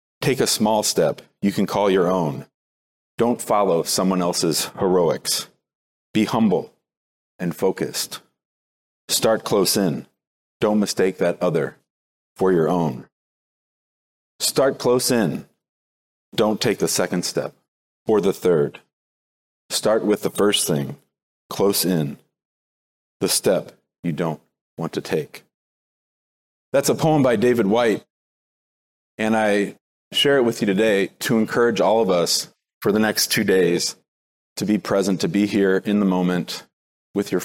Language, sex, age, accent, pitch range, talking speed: English, male, 40-59, American, 70-100 Hz, 140 wpm